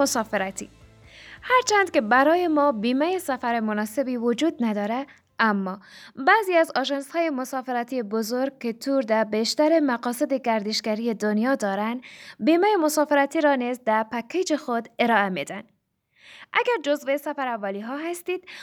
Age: 20-39